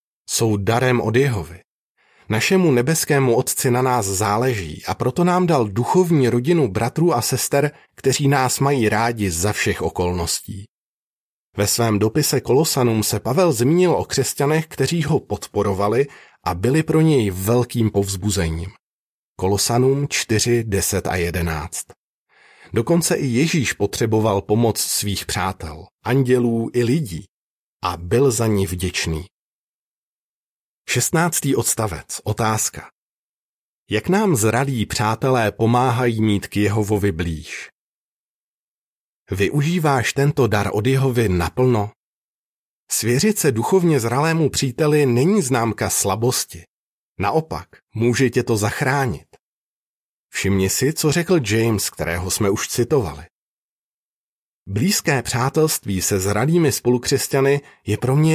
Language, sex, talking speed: Czech, male, 115 wpm